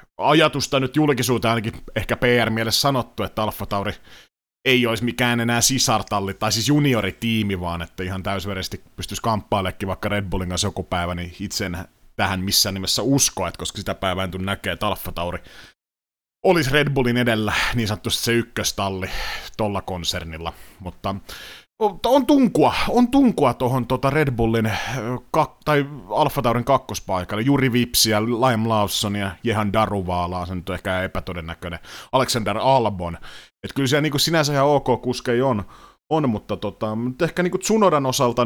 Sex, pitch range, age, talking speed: male, 95-135 Hz, 30-49, 155 wpm